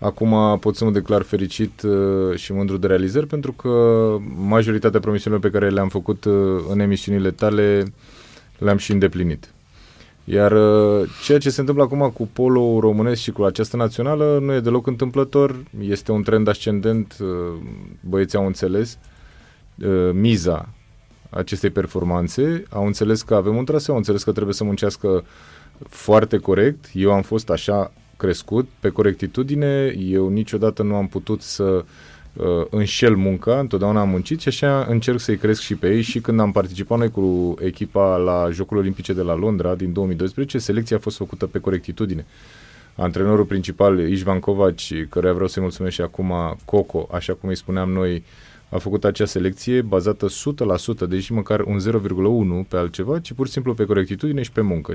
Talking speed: 165 wpm